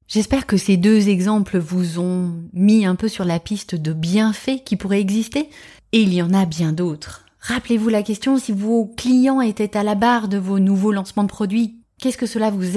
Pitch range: 175-230 Hz